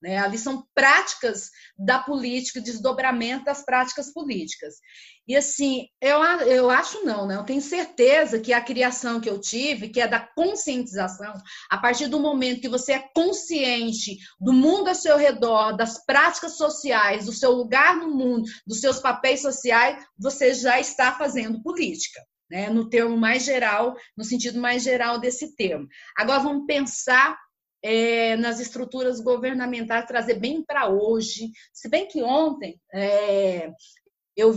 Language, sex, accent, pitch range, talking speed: Portuguese, female, Brazilian, 225-275 Hz, 155 wpm